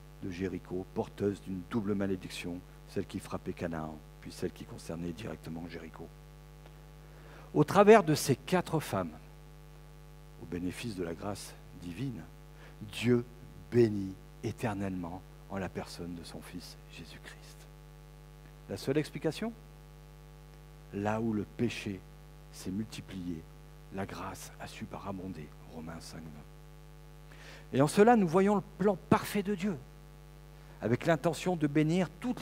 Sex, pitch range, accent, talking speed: male, 105-150 Hz, French, 130 wpm